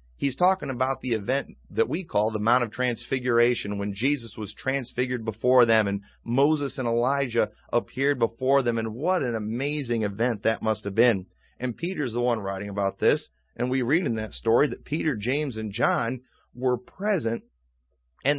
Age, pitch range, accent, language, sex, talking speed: 30-49, 110-140 Hz, American, English, male, 180 wpm